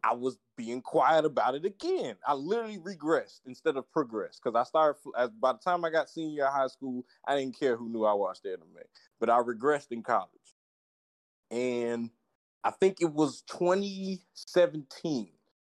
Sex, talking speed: male, 165 wpm